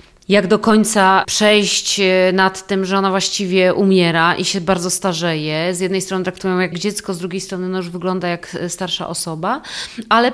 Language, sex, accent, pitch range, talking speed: Polish, female, native, 180-215 Hz, 175 wpm